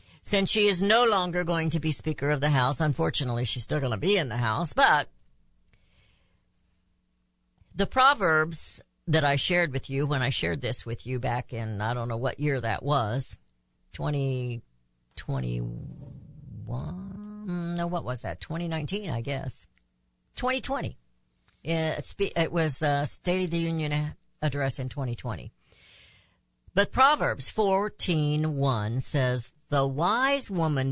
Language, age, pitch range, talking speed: English, 60-79, 115-170 Hz, 140 wpm